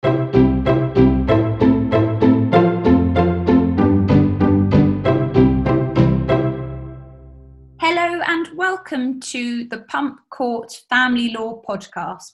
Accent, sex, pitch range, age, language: British, female, 195-250 Hz, 20-39, English